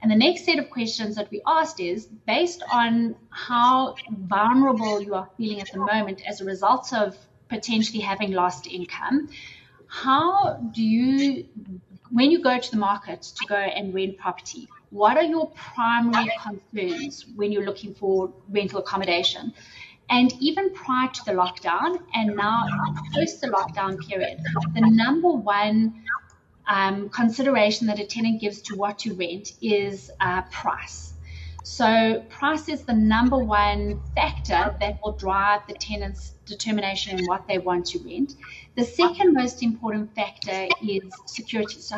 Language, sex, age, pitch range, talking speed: English, female, 30-49, 195-245 Hz, 155 wpm